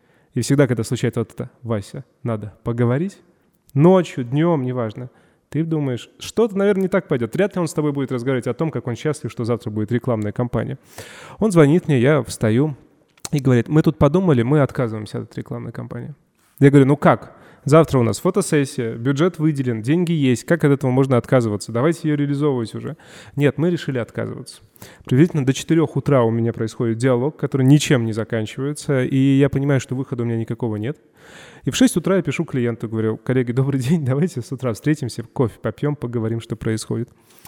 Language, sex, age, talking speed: Russian, male, 20-39, 185 wpm